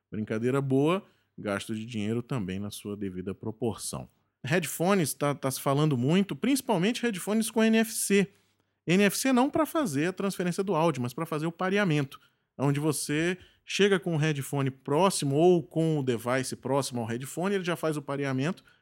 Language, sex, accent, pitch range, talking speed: Portuguese, male, Brazilian, 120-165 Hz, 165 wpm